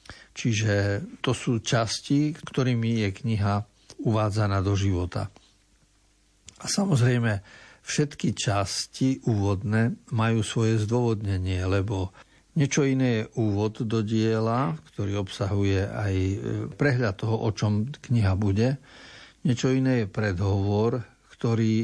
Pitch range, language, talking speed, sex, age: 105-125 Hz, Slovak, 105 wpm, male, 60-79